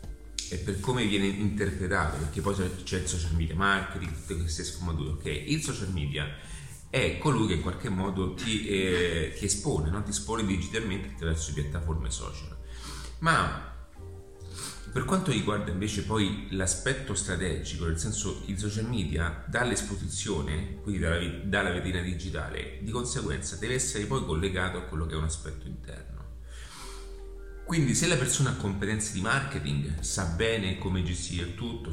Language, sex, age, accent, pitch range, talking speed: Italian, male, 30-49, native, 80-100 Hz, 155 wpm